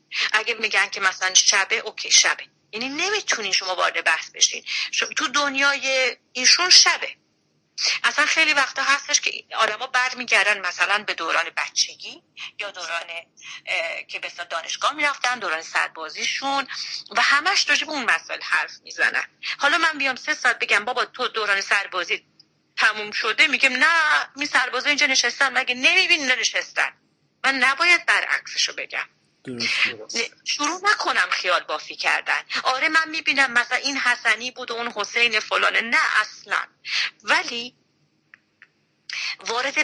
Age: 40-59